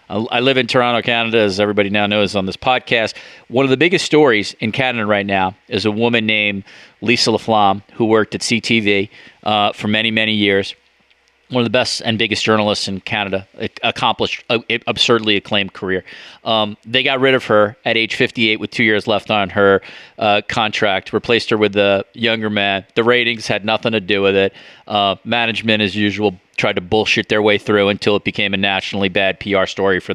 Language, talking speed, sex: English, 200 wpm, male